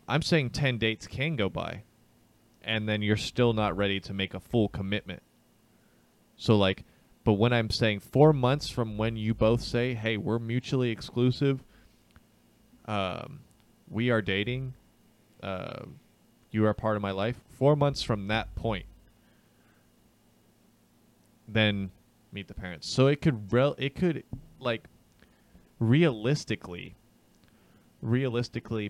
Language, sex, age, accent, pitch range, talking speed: English, male, 20-39, American, 95-115 Hz, 130 wpm